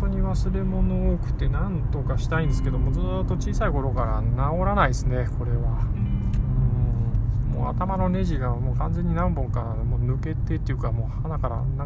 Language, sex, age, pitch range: Japanese, male, 20-39, 115-130 Hz